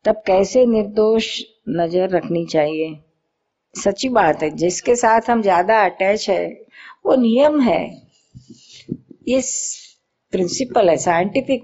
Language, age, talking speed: Hindi, 50-69, 115 wpm